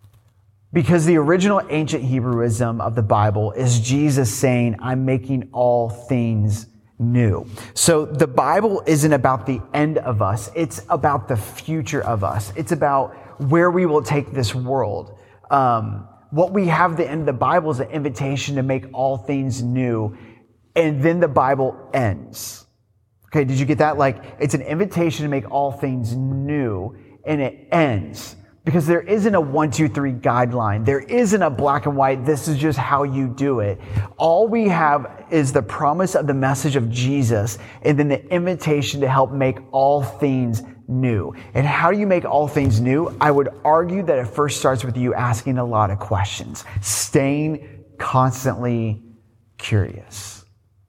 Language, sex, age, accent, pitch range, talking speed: English, male, 30-49, American, 115-150 Hz, 170 wpm